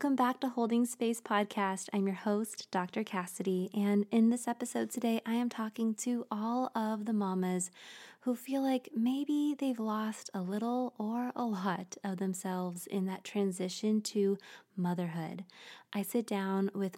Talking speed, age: 165 wpm, 20-39